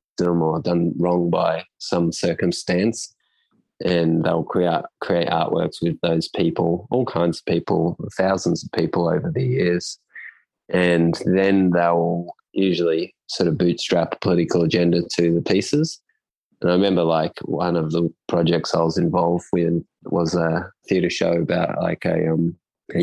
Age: 20-39